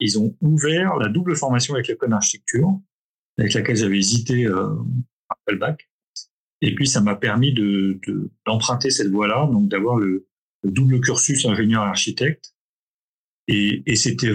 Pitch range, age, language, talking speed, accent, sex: 105-135 Hz, 40-59, French, 160 wpm, French, male